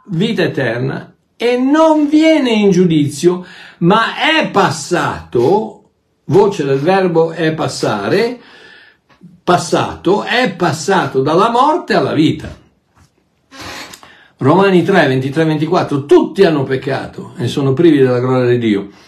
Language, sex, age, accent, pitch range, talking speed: Italian, male, 60-79, native, 145-200 Hz, 115 wpm